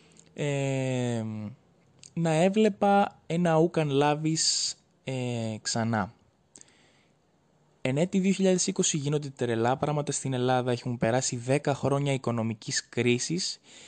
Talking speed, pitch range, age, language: 95 wpm, 120-155 Hz, 20-39, Greek